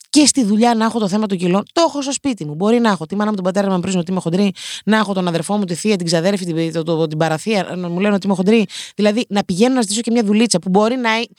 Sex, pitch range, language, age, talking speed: female, 185-250 Hz, Greek, 30-49, 310 wpm